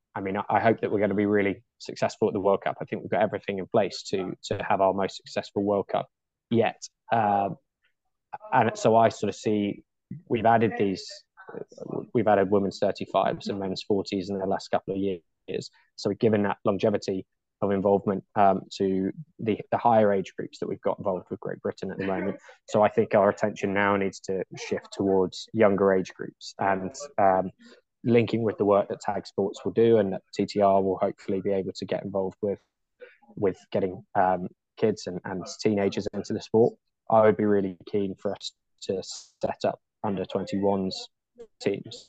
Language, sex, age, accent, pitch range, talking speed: English, male, 20-39, British, 95-105 Hz, 190 wpm